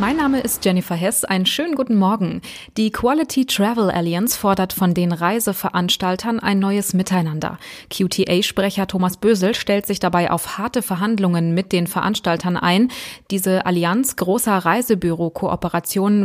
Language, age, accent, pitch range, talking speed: German, 20-39, German, 180-225 Hz, 135 wpm